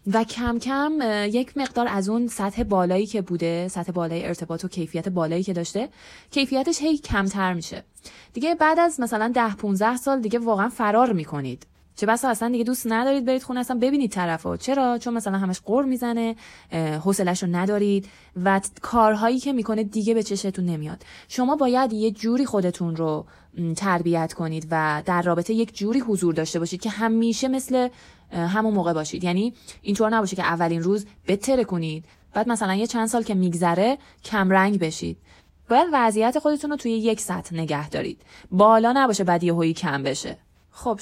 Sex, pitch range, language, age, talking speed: female, 170-230 Hz, Persian, 20-39, 170 wpm